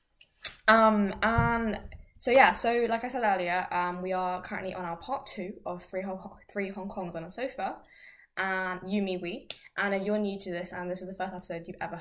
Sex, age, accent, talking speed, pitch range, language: female, 10-29, British, 215 wpm, 180-210 Hz, English